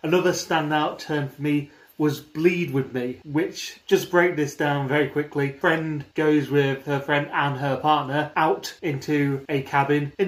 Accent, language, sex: British, English, male